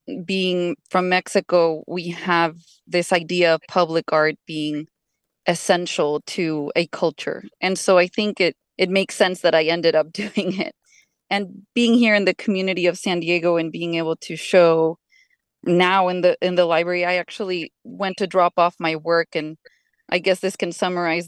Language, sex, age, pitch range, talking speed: English, female, 20-39, 170-195 Hz, 180 wpm